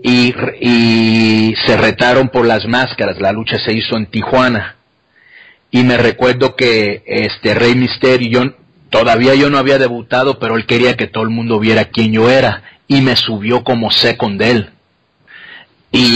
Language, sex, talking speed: English, male, 165 wpm